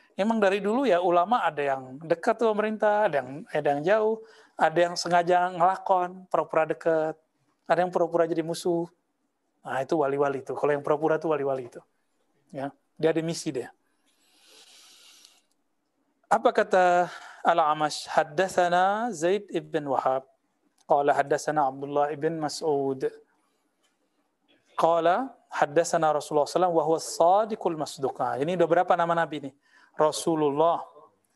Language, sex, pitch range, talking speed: Indonesian, male, 155-190 Hz, 130 wpm